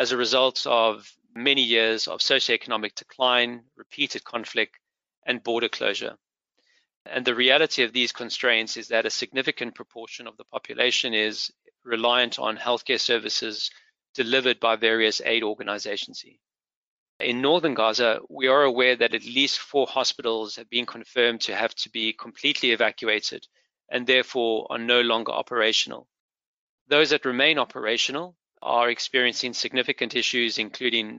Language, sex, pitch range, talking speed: English, male, 115-130 Hz, 140 wpm